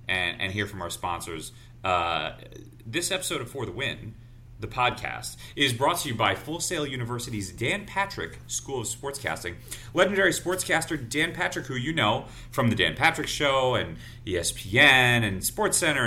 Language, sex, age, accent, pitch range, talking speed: English, male, 30-49, American, 105-140 Hz, 160 wpm